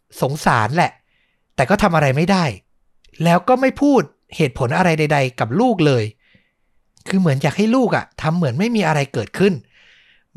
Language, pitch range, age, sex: Thai, 125-170 Hz, 60-79, male